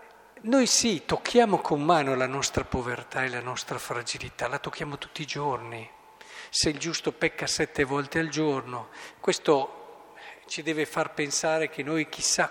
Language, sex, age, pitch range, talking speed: Italian, male, 50-69, 140-175 Hz, 160 wpm